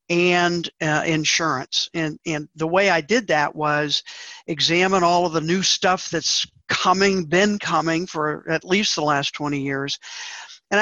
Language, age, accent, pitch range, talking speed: English, 50-69, American, 145-180 Hz, 160 wpm